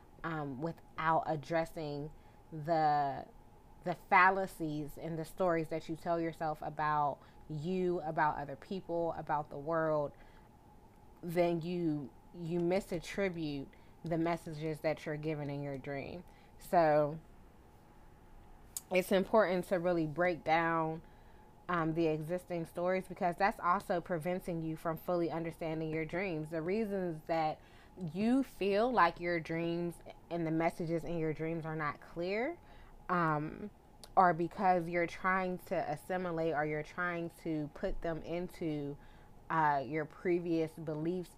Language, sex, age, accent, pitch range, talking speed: English, female, 20-39, American, 155-180 Hz, 130 wpm